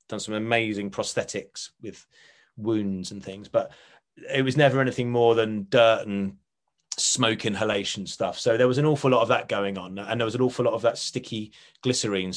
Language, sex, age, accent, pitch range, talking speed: English, male, 30-49, British, 95-120 Hz, 195 wpm